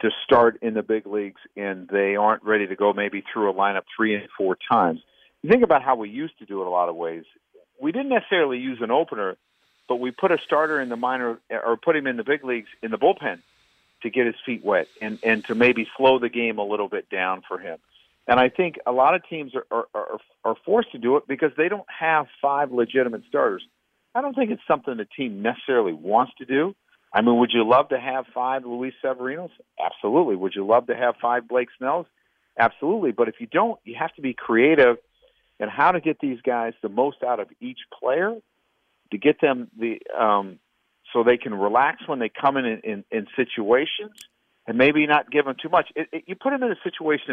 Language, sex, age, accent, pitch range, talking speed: English, male, 50-69, American, 110-155 Hz, 230 wpm